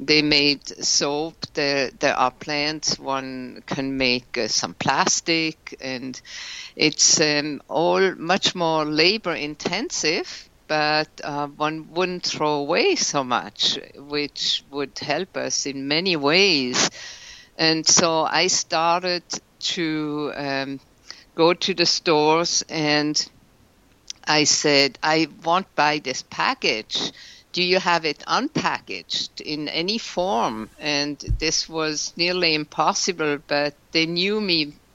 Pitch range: 145-170 Hz